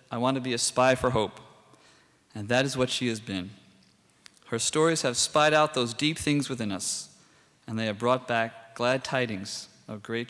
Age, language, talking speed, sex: 40-59, English, 200 wpm, male